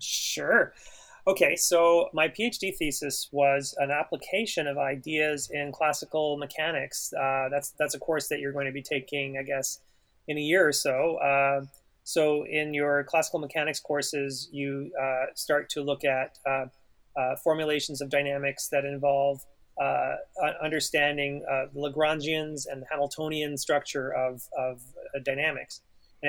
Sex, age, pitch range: male, 30-49, 140-155 Hz